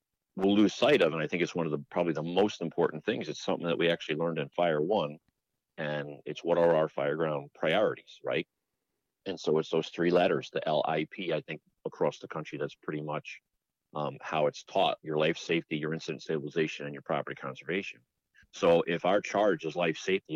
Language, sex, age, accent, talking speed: English, male, 40-59, American, 210 wpm